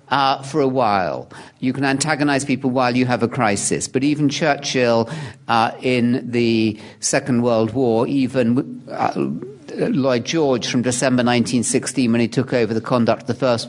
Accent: British